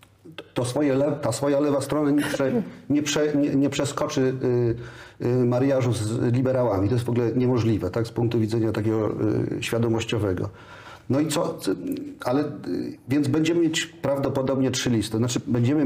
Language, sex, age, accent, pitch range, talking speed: Polish, male, 40-59, native, 120-135 Hz, 160 wpm